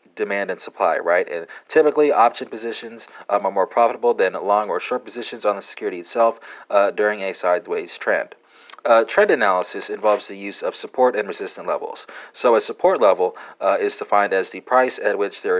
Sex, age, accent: male, 40-59, American